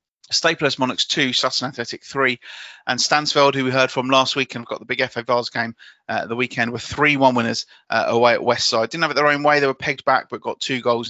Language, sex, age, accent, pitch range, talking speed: English, male, 30-49, British, 115-145 Hz, 255 wpm